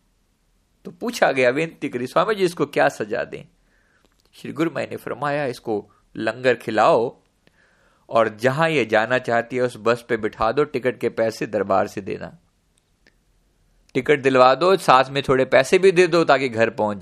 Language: Hindi